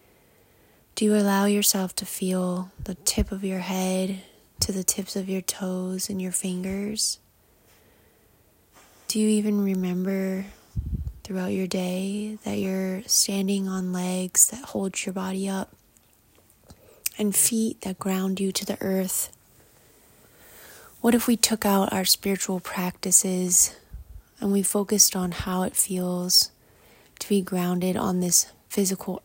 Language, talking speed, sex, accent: English, 135 wpm, female, American